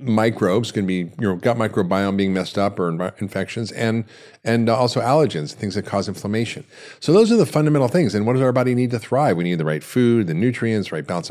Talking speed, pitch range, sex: 235 wpm, 100-130 Hz, male